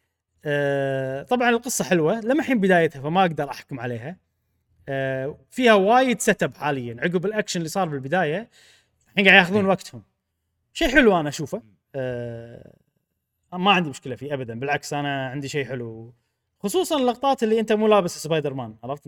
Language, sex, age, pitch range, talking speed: Arabic, male, 20-39, 125-190 Hz, 150 wpm